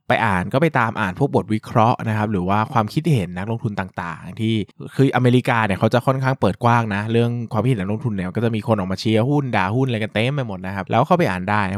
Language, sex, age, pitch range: Thai, male, 20-39, 100-120 Hz